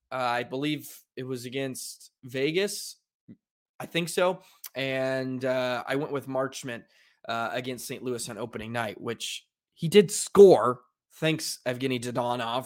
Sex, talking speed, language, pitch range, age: male, 140 wpm, English, 125-155 Hz, 20-39